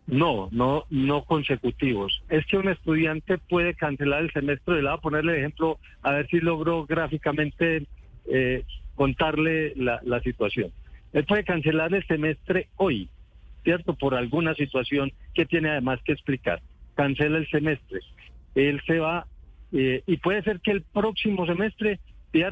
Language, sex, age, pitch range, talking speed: Spanish, male, 50-69, 130-165 Hz, 150 wpm